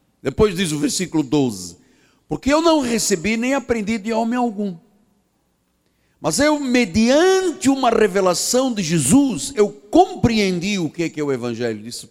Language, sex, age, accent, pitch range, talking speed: Portuguese, male, 60-79, Brazilian, 180-250 Hz, 155 wpm